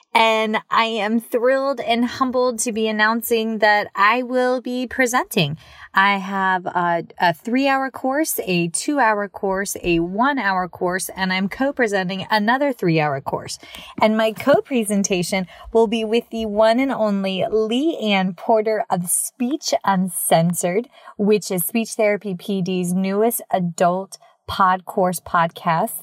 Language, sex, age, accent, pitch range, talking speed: English, female, 30-49, American, 185-235 Hz, 145 wpm